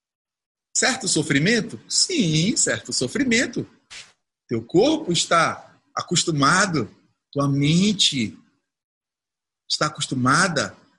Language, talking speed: Portuguese, 70 wpm